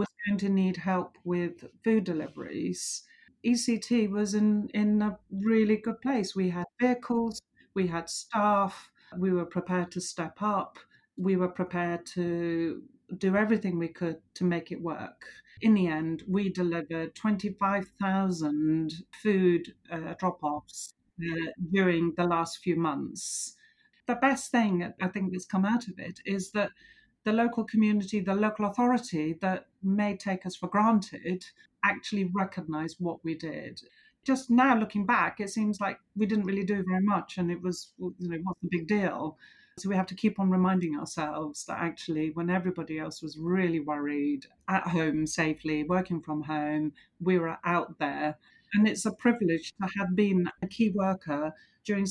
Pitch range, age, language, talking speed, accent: 170-210 Hz, 40-59, English, 160 wpm, British